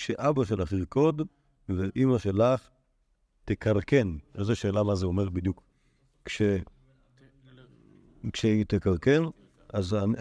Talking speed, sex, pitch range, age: 100 wpm, male, 100-130 Hz, 50-69